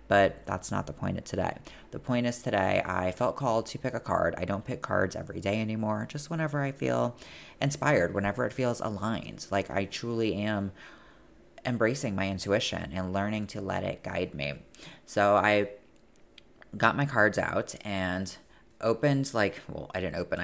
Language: English